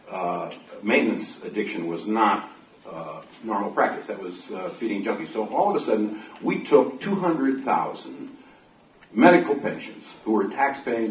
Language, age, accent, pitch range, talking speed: English, 50-69, American, 110-130 Hz, 145 wpm